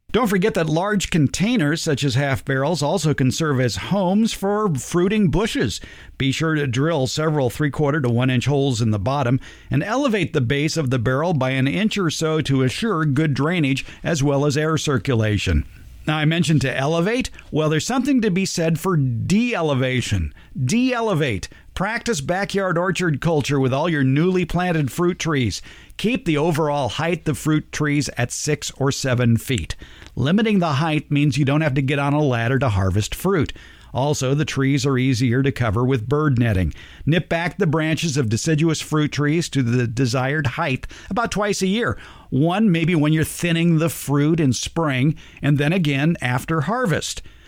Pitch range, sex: 130-165 Hz, male